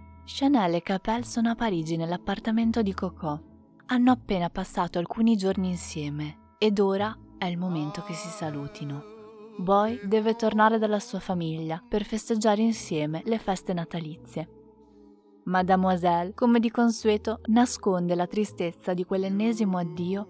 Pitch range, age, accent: 160-220 Hz, 20-39, native